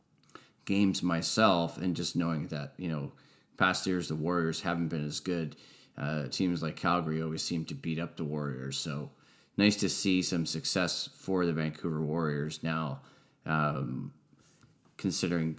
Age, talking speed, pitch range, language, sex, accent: 30-49, 155 wpm, 75-90 Hz, English, male, American